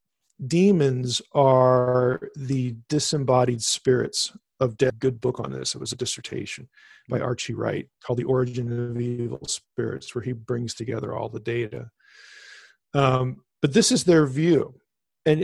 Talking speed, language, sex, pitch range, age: 150 wpm, English, male, 125-155 Hz, 40-59